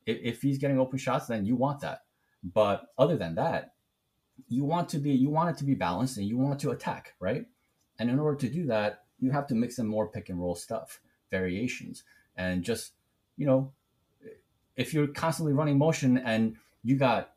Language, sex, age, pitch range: English, male, 30-49, 115-150 Hz